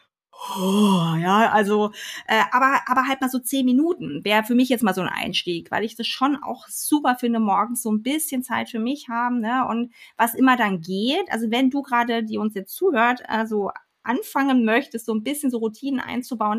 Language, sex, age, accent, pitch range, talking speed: German, female, 30-49, German, 215-270 Hz, 205 wpm